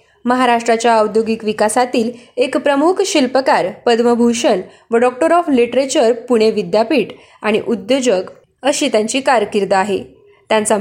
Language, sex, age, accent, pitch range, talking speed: Marathi, female, 20-39, native, 220-280 Hz, 110 wpm